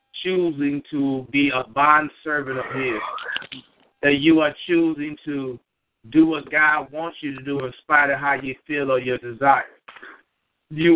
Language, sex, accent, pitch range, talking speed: English, male, American, 145-170 Hz, 165 wpm